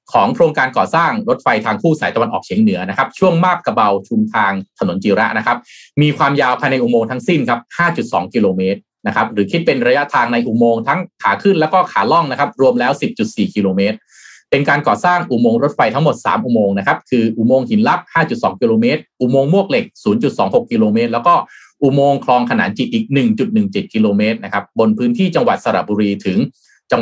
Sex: male